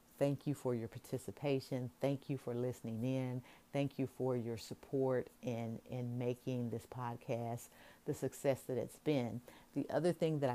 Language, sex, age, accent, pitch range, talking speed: English, female, 50-69, American, 120-135 Hz, 165 wpm